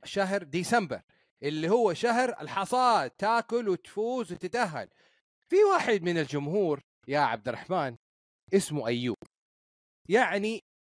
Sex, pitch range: male, 195-310 Hz